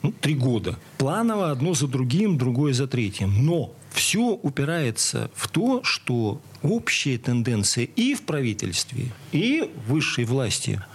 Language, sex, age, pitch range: Russian, male, 40-59, 125-185 Hz